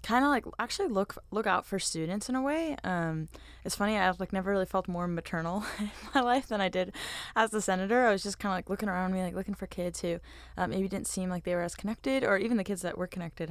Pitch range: 170-215 Hz